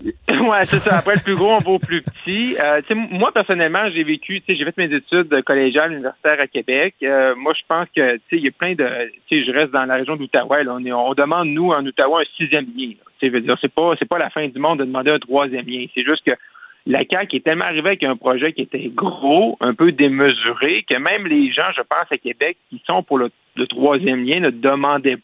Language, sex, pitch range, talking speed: French, male, 135-180 Hz, 240 wpm